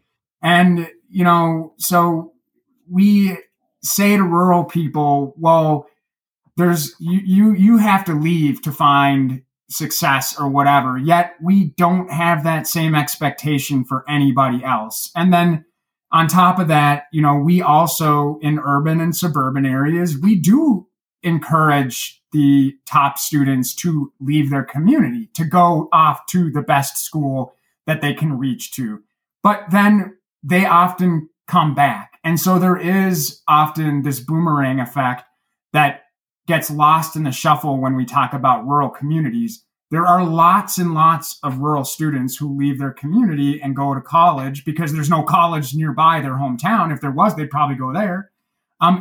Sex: male